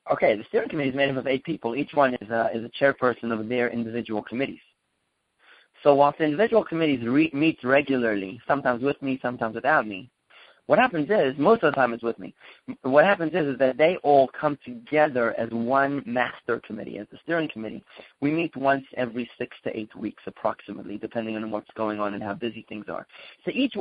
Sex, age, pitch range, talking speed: male, 30-49, 120-155 Hz, 210 wpm